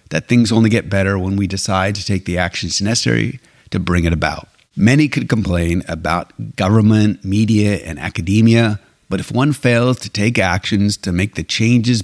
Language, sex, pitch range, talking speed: English, male, 90-115 Hz, 180 wpm